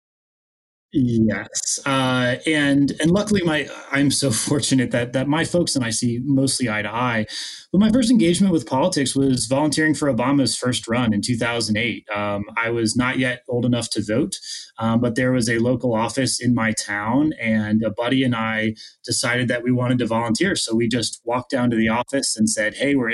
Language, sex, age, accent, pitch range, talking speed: English, male, 30-49, American, 115-145 Hz, 195 wpm